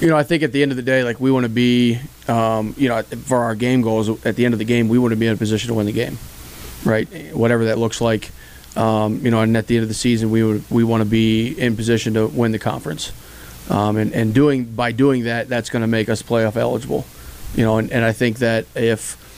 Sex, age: male, 30-49